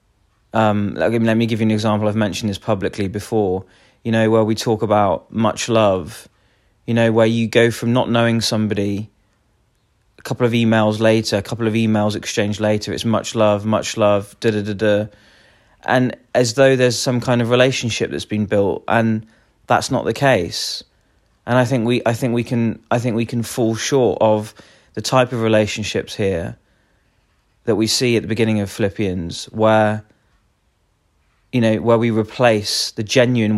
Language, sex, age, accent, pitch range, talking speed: English, male, 20-39, British, 105-115 Hz, 185 wpm